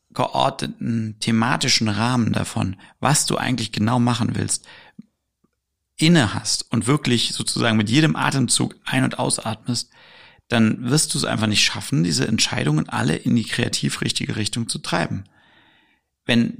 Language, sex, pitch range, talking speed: German, male, 110-135 Hz, 140 wpm